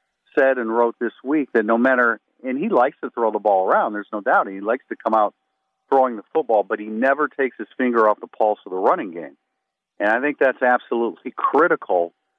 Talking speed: 225 wpm